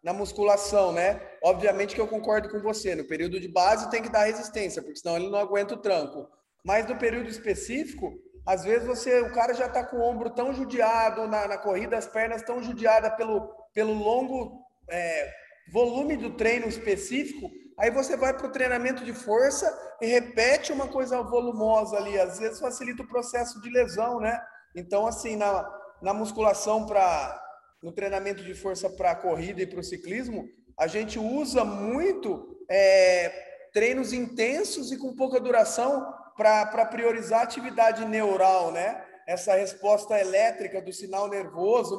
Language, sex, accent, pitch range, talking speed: Portuguese, male, Brazilian, 200-245 Hz, 165 wpm